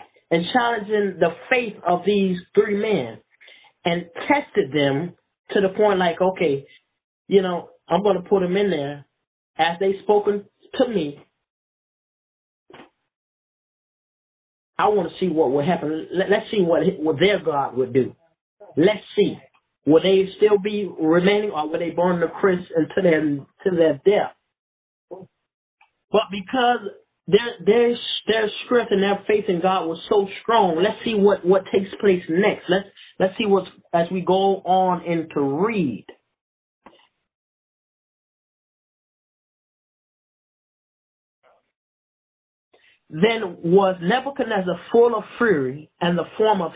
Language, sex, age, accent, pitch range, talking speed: English, male, 30-49, American, 170-210 Hz, 135 wpm